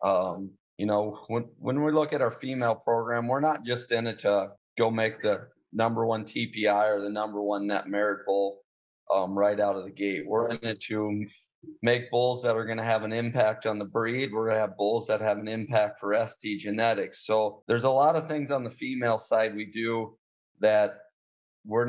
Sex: male